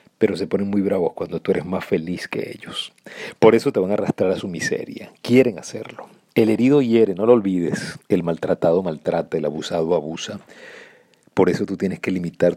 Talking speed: 195 wpm